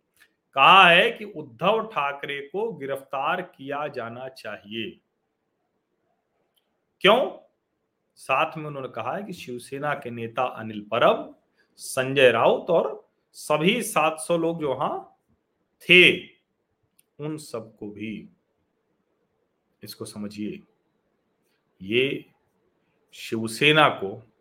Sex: male